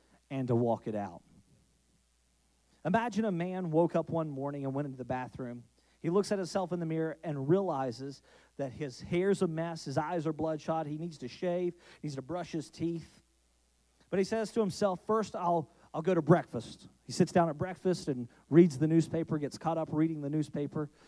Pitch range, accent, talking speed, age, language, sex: 135-175 Hz, American, 200 wpm, 40-59, English, male